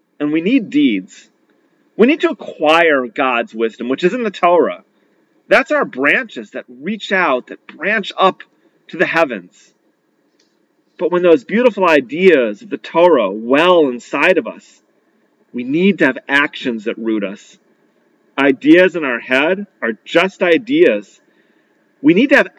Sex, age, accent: male, 40-59, American